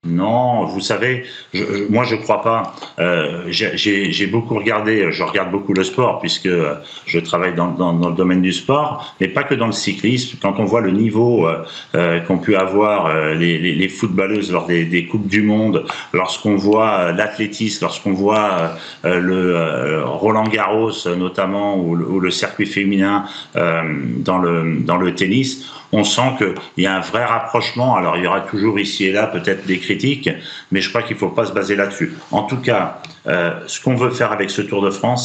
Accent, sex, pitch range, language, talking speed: French, male, 90-110 Hz, French, 200 wpm